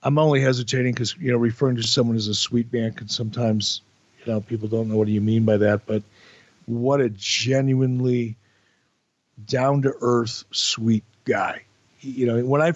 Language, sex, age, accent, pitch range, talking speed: English, male, 50-69, American, 110-130 Hz, 180 wpm